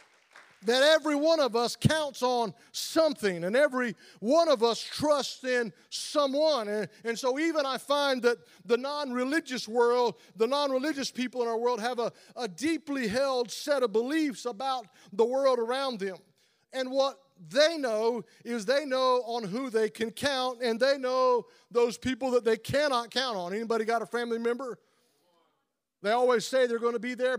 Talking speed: 175 wpm